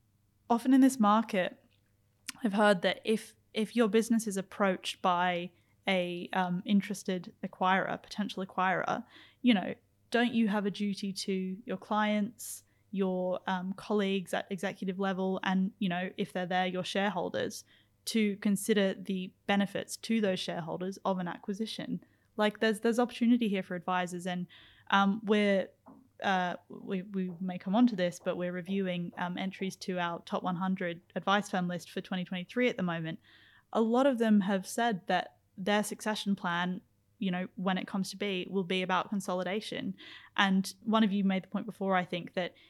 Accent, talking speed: Australian, 170 wpm